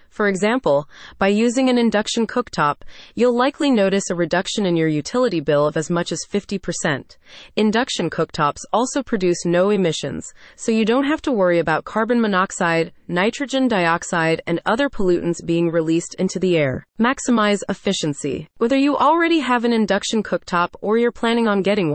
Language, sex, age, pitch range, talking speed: English, female, 30-49, 170-230 Hz, 165 wpm